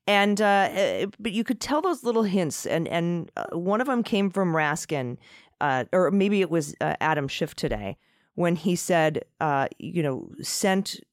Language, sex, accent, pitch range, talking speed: English, female, American, 140-185 Hz, 180 wpm